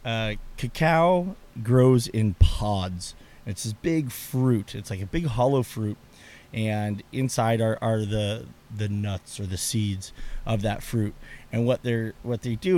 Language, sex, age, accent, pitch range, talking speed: English, male, 30-49, American, 110-140 Hz, 160 wpm